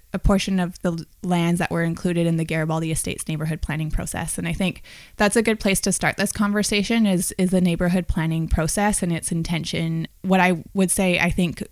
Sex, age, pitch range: female, 20-39, 170-200 Hz